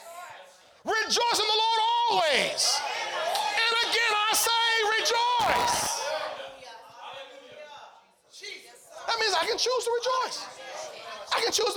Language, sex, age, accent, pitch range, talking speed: English, male, 30-49, American, 345-430 Hz, 100 wpm